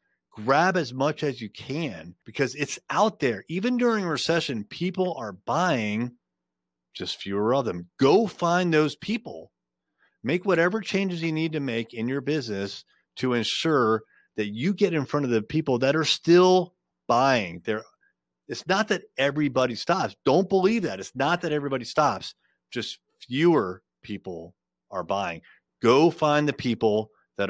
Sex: male